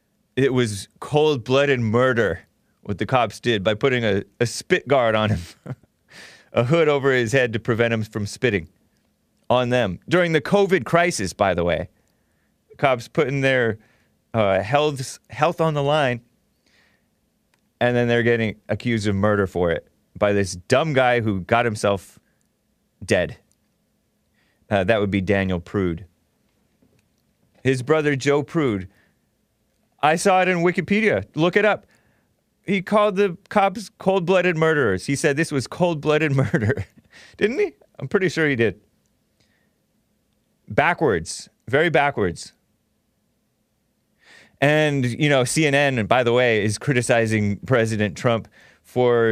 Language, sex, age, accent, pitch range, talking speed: English, male, 30-49, American, 105-150 Hz, 135 wpm